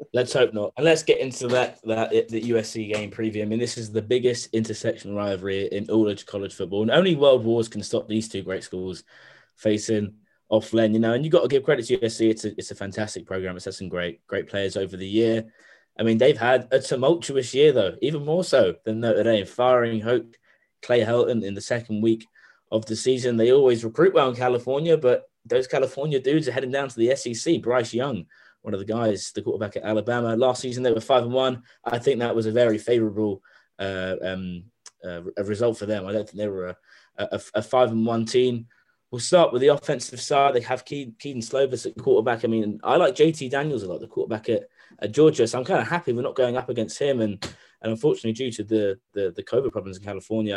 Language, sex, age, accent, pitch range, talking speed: English, male, 20-39, British, 105-130 Hz, 230 wpm